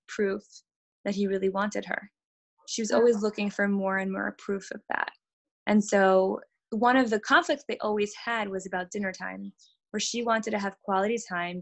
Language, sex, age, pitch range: English, female, 20-39, 190-230 Hz